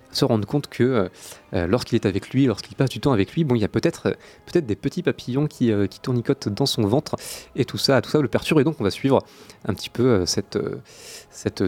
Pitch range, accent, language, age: 100-130 Hz, French, French, 30-49